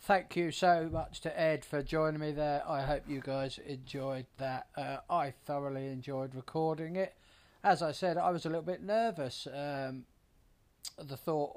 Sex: male